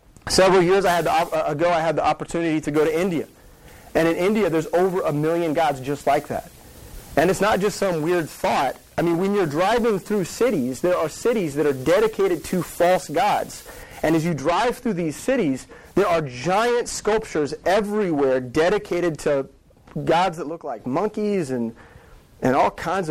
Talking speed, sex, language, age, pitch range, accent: 175 wpm, male, English, 30-49, 145-190 Hz, American